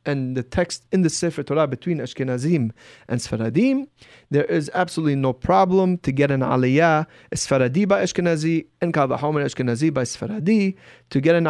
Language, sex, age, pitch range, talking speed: English, male, 30-49, 135-180 Hz, 165 wpm